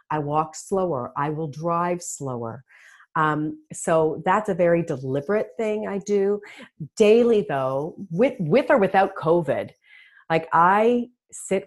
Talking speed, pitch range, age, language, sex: 135 wpm, 145-190 Hz, 40-59, English, female